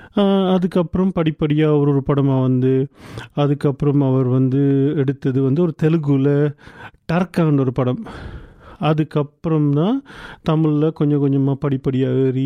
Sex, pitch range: male, 140-175 Hz